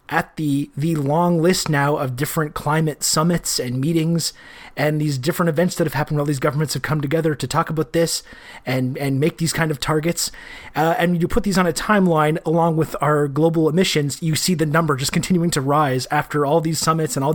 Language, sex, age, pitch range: English, male, 30-49, 145-170 Hz